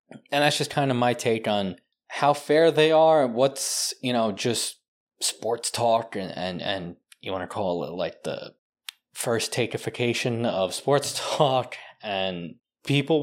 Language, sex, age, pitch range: English, male, 20-39, 105-135 Hz